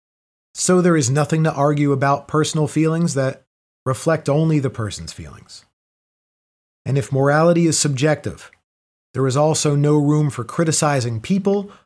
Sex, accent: male, American